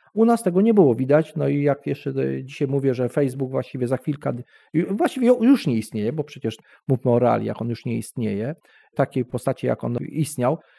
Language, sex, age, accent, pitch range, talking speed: Polish, male, 40-59, native, 130-185 Hz, 195 wpm